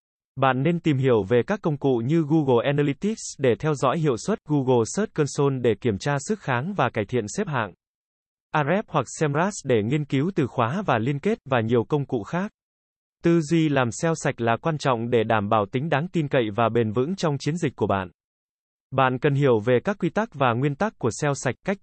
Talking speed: 225 wpm